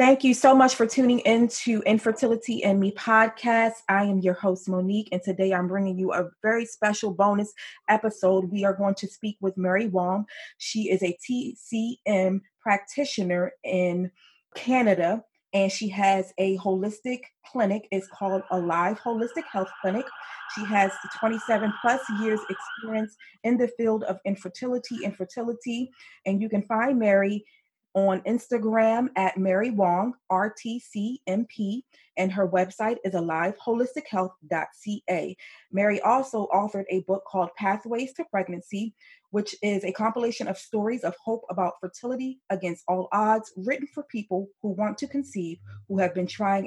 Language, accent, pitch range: English, American, 185-225 Hz